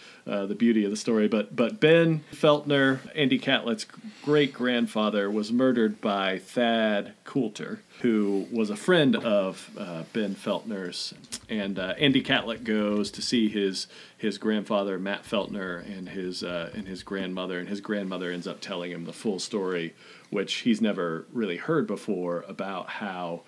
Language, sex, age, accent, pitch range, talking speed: English, male, 40-59, American, 100-135 Hz, 160 wpm